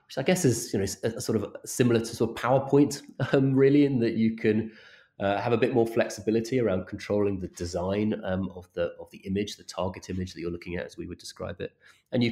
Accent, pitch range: British, 85-110 Hz